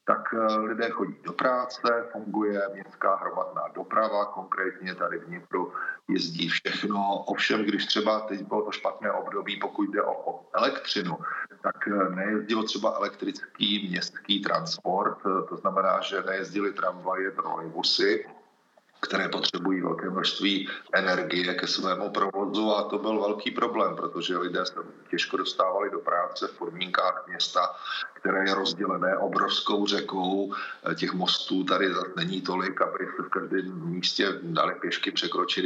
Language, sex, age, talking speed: Slovak, male, 40-59, 135 wpm